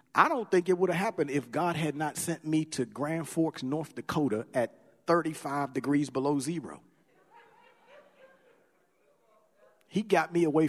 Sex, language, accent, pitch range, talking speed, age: male, English, American, 140-180 Hz, 150 wpm, 50-69